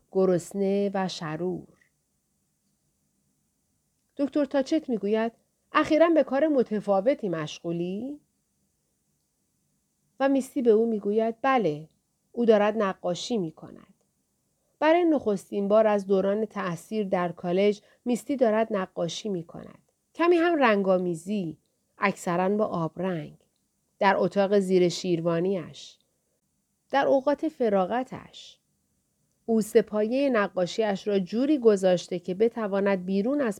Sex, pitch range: female, 180-235 Hz